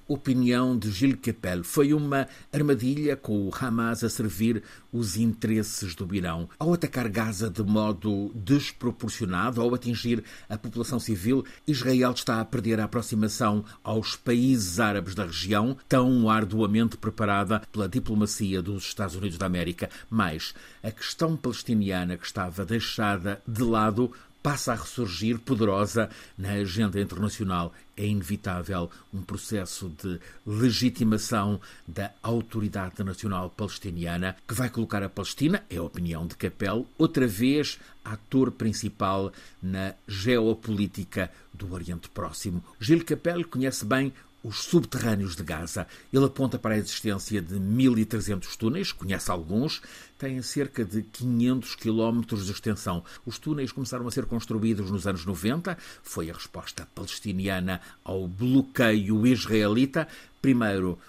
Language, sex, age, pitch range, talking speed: Portuguese, male, 50-69, 100-120 Hz, 135 wpm